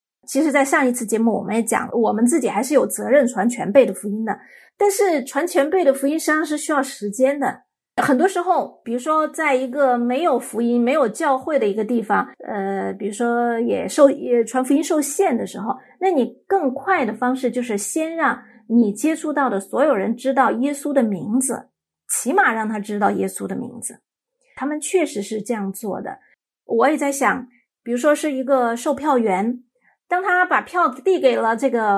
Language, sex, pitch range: Chinese, female, 235-300 Hz